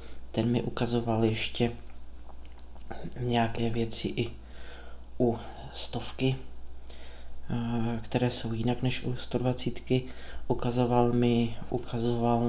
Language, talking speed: Czech, 85 wpm